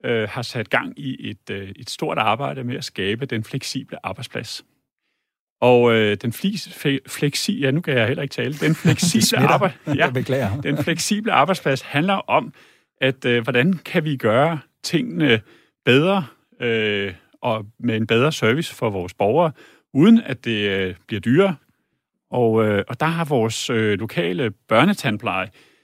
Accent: native